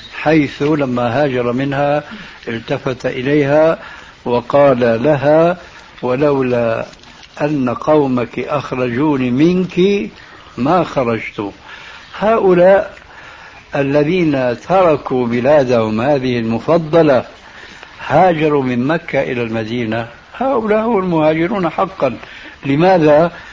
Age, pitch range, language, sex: 60-79, 125-160 Hz, Arabic, male